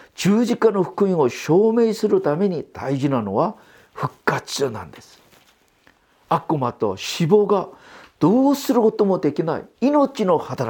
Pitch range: 160-260 Hz